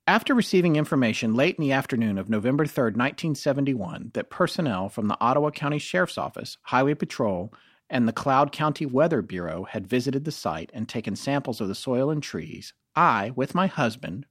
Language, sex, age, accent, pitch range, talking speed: English, male, 40-59, American, 115-155 Hz, 180 wpm